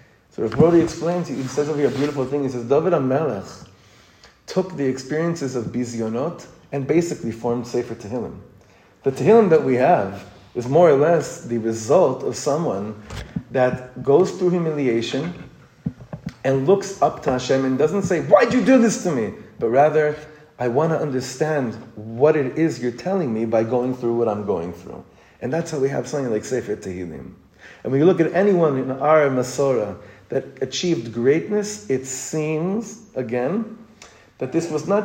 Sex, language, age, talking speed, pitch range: male, English, 30-49, 175 wpm, 125-165 Hz